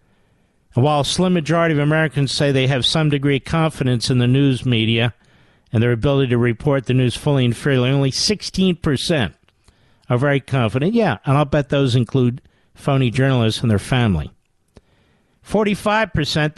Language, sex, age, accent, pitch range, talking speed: English, male, 50-69, American, 125-170 Hz, 165 wpm